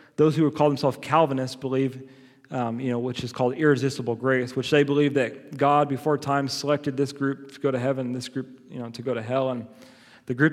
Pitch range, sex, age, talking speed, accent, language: 125-150 Hz, male, 30-49, 220 wpm, American, English